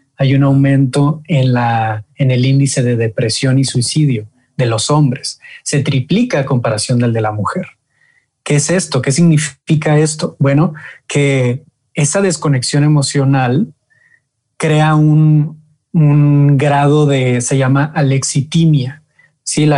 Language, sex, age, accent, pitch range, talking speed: English, male, 30-49, Mexican, 130-150 Hz, 130 wpm